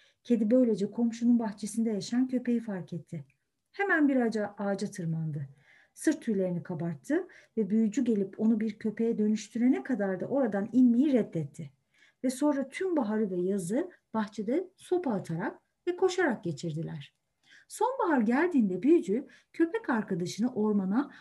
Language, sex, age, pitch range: Turkish, female, 50-69, 190-270 Hz